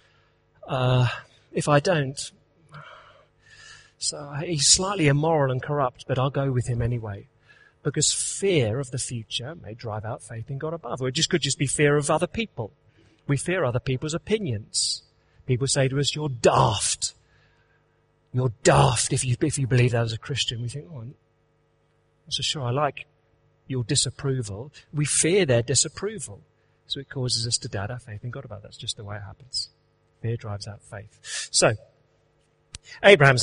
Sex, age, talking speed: male, 40-59, 175 wpm